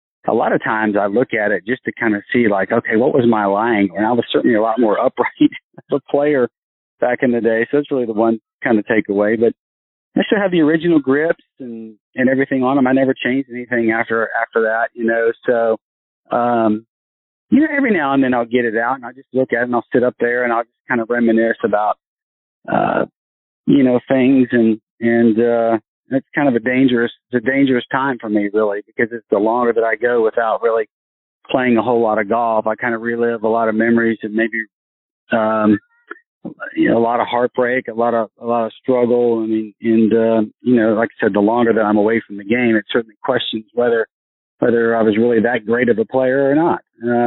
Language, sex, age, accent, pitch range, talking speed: English, male, 40-59, American, 110-130 Hz, 230 wpm